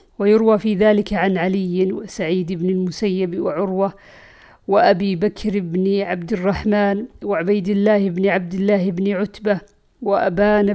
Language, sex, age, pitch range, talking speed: Arabic, female, 50-69, 195-215 Hz, 125 wpm